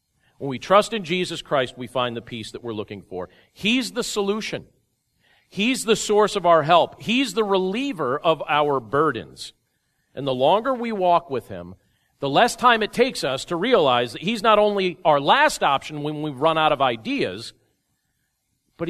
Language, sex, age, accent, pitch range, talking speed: English, male, 40-59, American, 120-180 Hz, 185 wpm